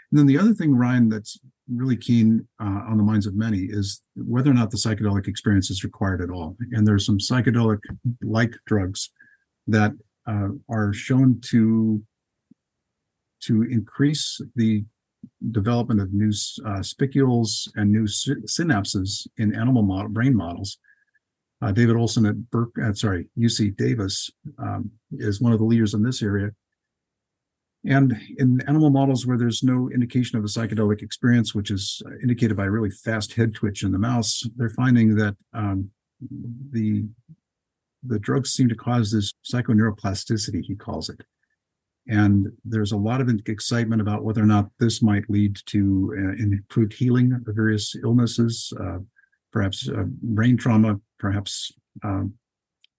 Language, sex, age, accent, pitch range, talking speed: English, male, 50-69, American, 105-120 Hz, 155 wpm